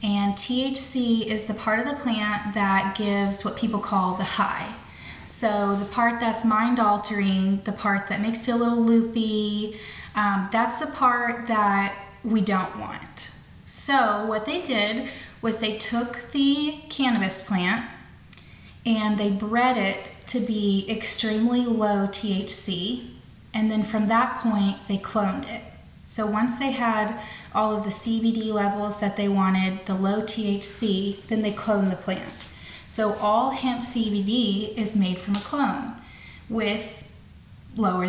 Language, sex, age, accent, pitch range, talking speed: English, female, 20-39, American, 195-225 Hz, 150 wpm